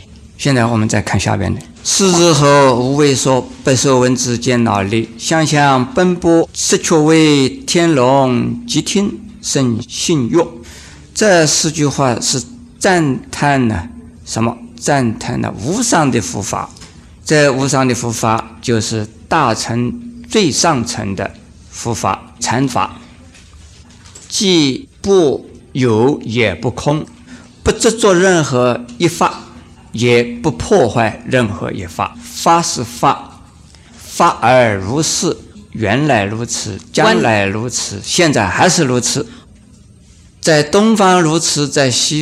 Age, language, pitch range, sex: 50-69, Chinese, 115-150 Hz, male